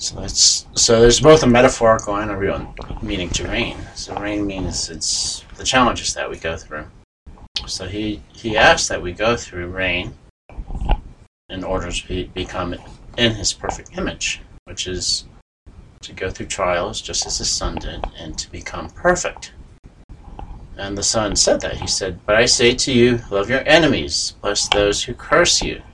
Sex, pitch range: male, 90-115 Hz